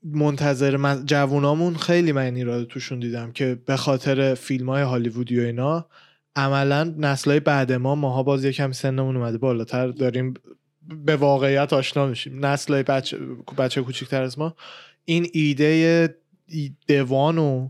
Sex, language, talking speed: male, Persian, 135 wpm